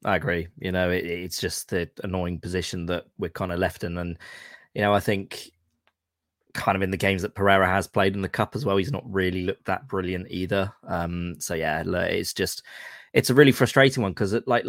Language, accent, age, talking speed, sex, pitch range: English, British, 20-39, 220 wpm, male, 90-110 Hz